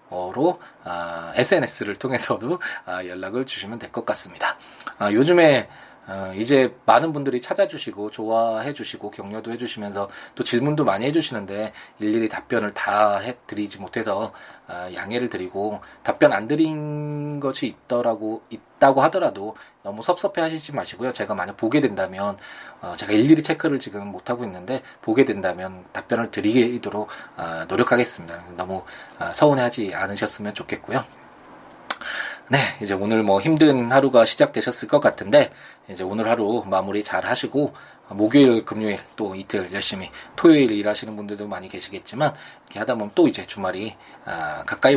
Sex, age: male, 20-39